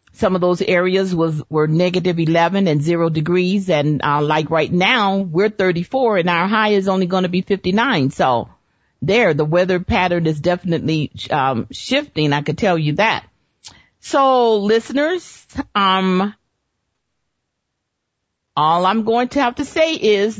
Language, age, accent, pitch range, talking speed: English, 40-59, American, 155-220 Hz, 155 wpm